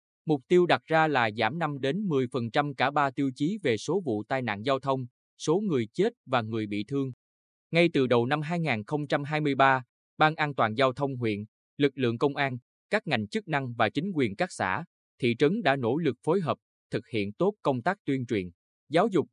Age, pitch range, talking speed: 20-39, 115-155 Hz, 205 wpm